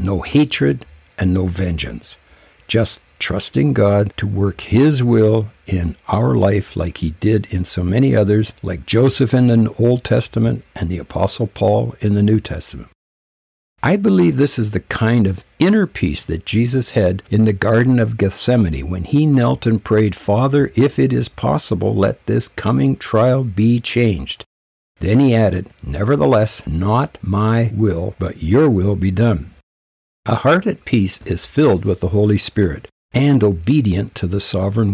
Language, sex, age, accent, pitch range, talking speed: English, male, 60-79, American, 90-120 Hz, 165 wpm